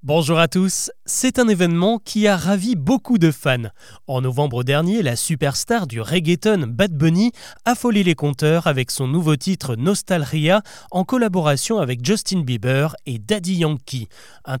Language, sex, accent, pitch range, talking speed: French, male, French, 140-205 Hz, 160 wpm